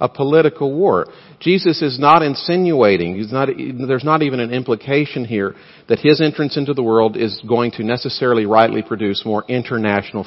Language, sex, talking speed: English, male, 170 wpm